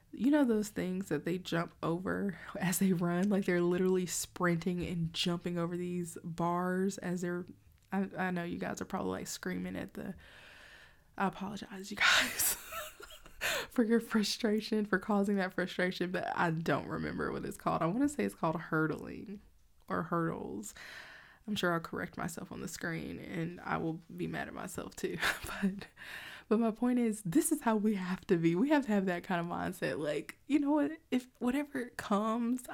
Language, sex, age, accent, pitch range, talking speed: English, female, 20-39, American, 180-220 Hz, 190 wpm